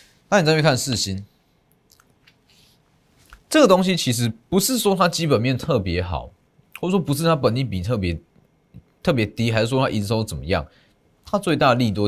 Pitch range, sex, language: 95-140 Hz, male, Chinese